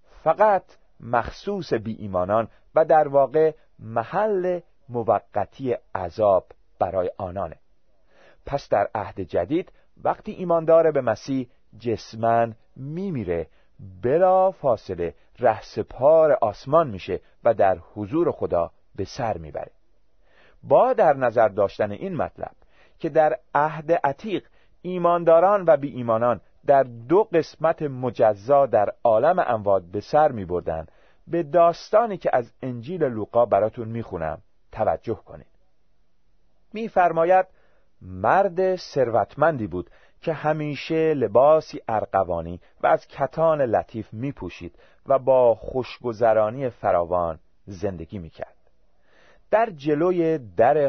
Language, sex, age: Persian, male, 40-59